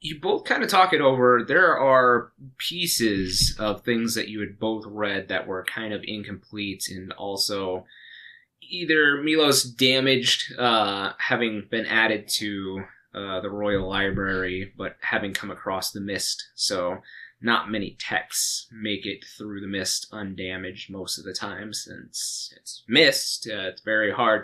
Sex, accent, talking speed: male, American, 155 wpm